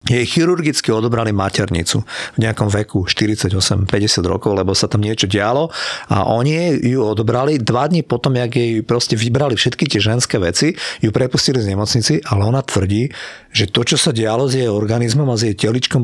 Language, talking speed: Slovak, 180 wpm